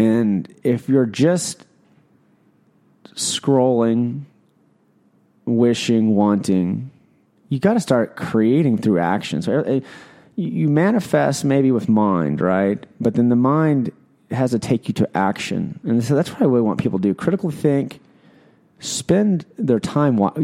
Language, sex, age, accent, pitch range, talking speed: English, male, 30-49, American, 105-145 Hz, 135 wpm